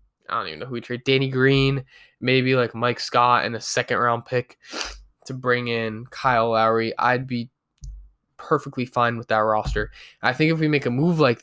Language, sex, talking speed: English, male, 195 wpm